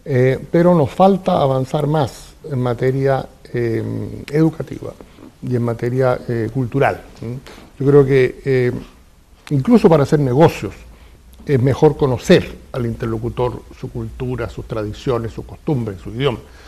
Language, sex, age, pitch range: Chinese, male, 60-79, 115-145 Hz